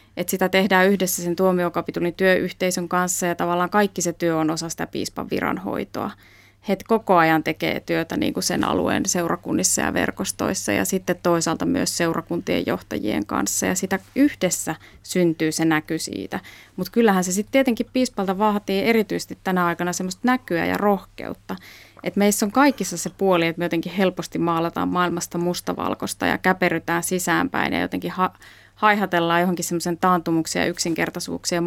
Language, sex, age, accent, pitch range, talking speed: Finnish, female, 20-39, native, 170-200 Hz, 155 wpm